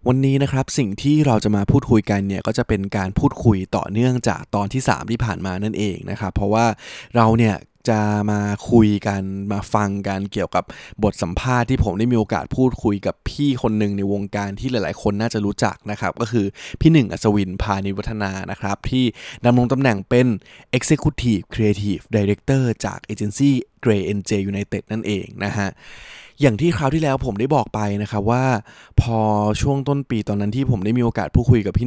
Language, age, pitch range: Thai, 20-39, 100-125 Hz